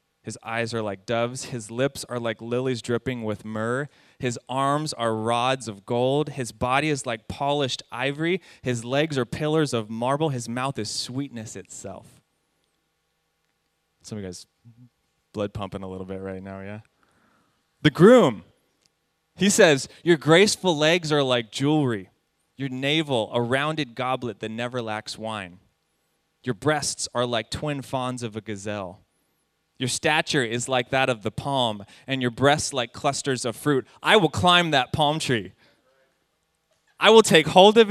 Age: 20-39